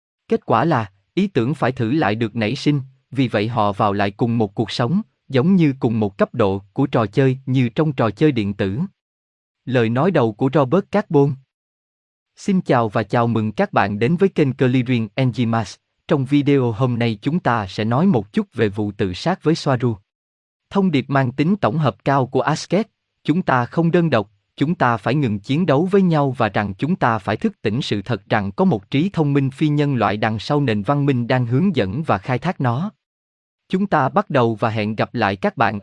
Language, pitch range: Vietnamese, 115-155 Hz